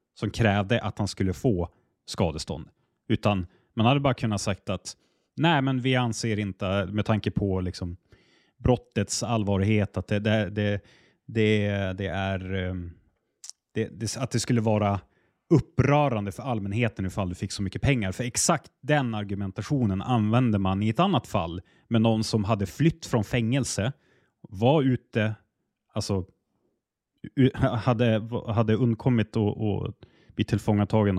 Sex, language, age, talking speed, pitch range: male, Swedish, 30-49, 140 wpm, 100-120 Hz